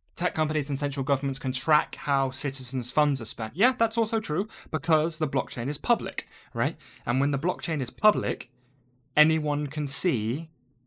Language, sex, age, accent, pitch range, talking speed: English, male, 20-39, British, 115-145 Hz, 170 wpm